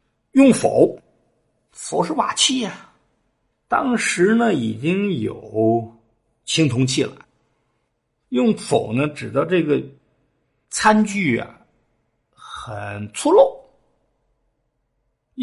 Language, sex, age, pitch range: Chinese, male, 50-69, 115-175 Hz